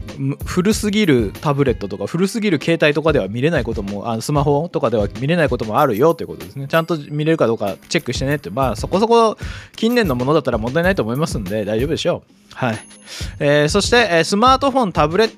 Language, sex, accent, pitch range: Japanese, male, native, 135-205 Hz